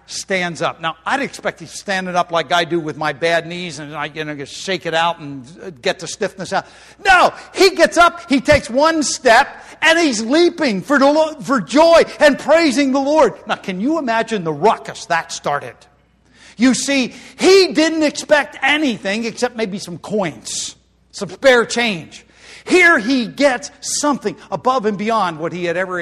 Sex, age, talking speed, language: male, 50-69, 180 wpm, English